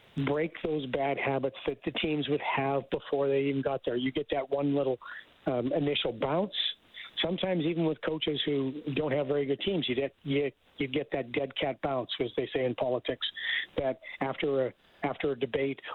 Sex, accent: male, American